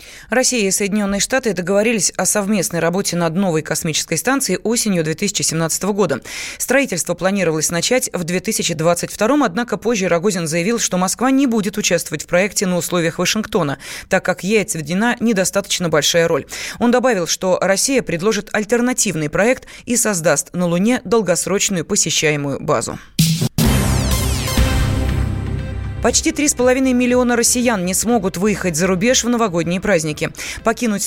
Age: 20-39